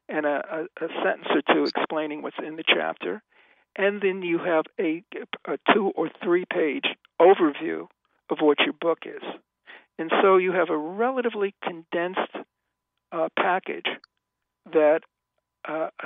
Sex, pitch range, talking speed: male, 160-205 Hz, 140 wpm